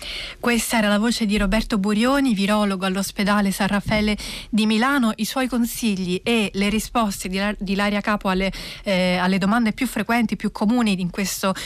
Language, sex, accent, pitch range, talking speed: Italian, female, native, 200-230 Hz, 165 wpm